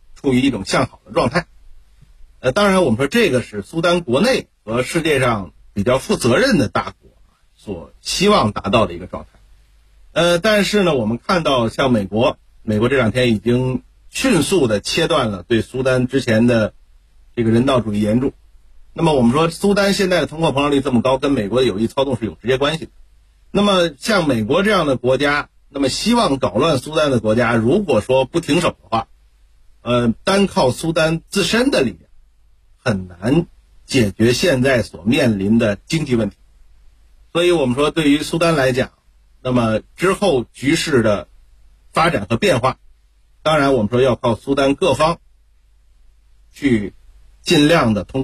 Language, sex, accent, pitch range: Chinese, male, native, 100-150 Hz